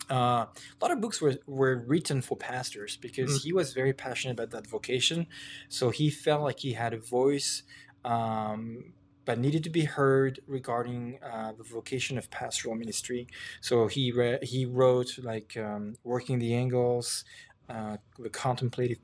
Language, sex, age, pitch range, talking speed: English, male, 20-39, 110-130 Hz, 160 wpm